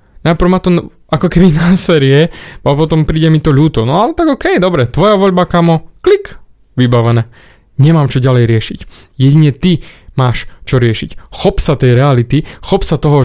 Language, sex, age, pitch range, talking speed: Slovak, male, 20-39, 125-165 Hz, 175 wpm